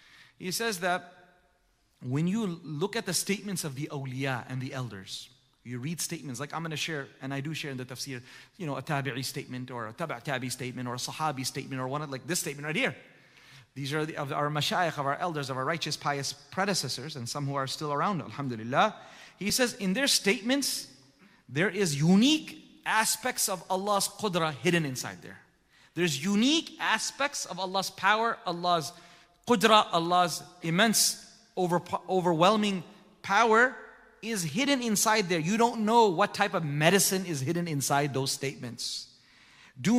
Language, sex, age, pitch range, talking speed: English, male, 30-49, 140-200 Hz, 175 wpm